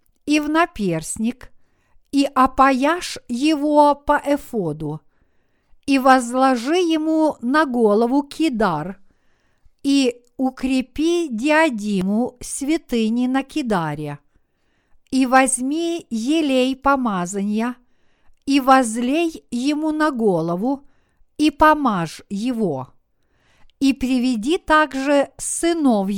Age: 50-69